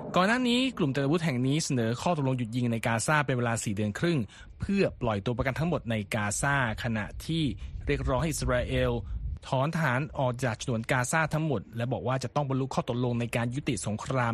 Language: Thai